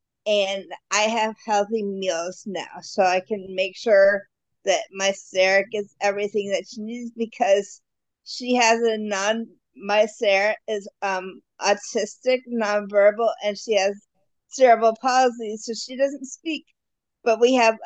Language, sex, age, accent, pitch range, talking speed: English, female, 50-69, American, 205-235 Hz, 140 wpm